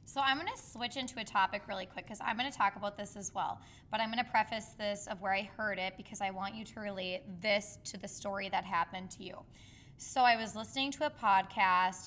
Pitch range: 185-220 Hz